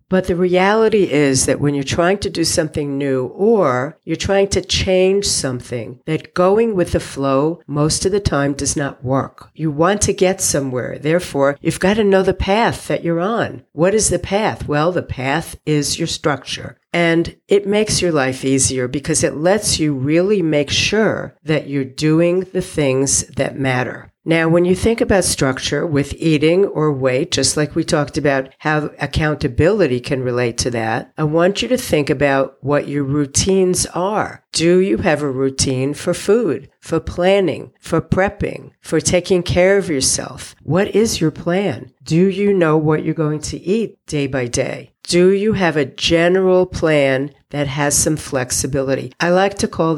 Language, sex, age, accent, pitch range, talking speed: English, female, 60-79, American, 140-180 Hz, 180 wpm